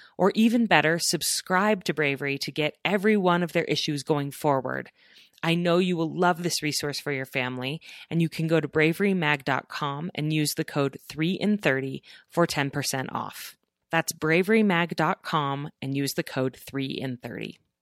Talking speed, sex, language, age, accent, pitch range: 155 wpm, female, English, 30-49, American, 140-175 Hz